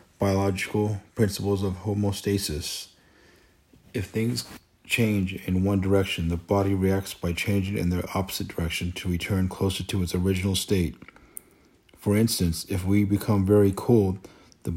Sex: male